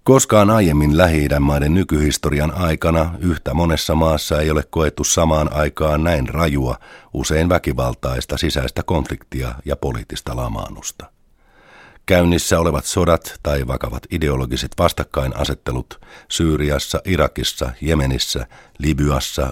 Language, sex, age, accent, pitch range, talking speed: Finnish, male, 50-69, native, 65-85 Hz, 105 wpm